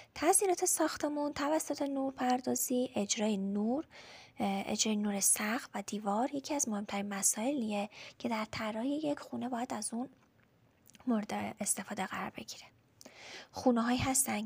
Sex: female